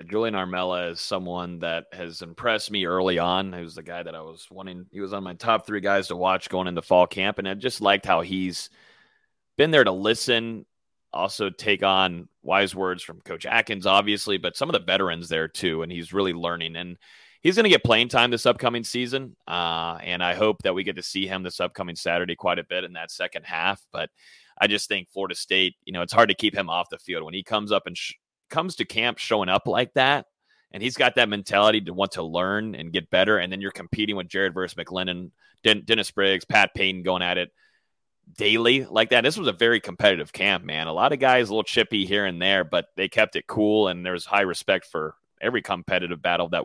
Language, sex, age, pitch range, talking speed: English, male, 30-49, 90-105 Hz, 235 wpm